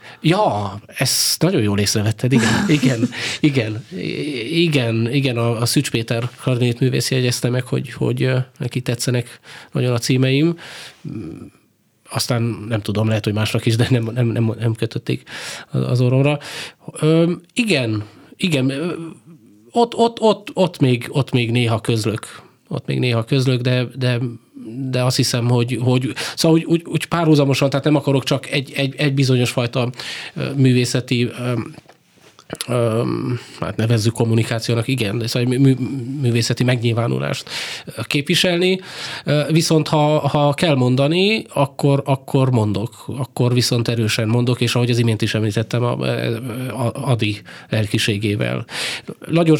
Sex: male